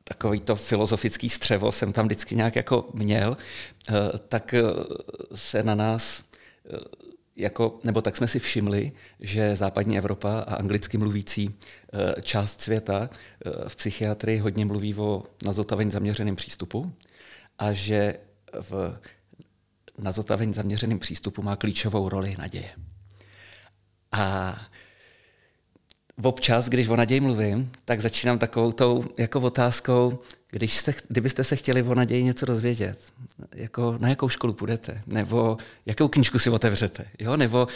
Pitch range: 105-120 Hz